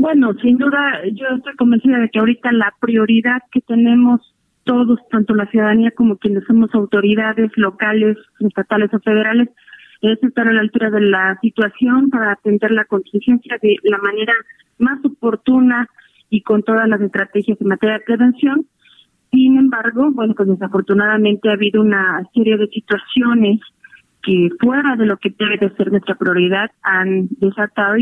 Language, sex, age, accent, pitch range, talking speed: Spanish, female, 30-49, Mexican, 200-235 Hz, 160 wpm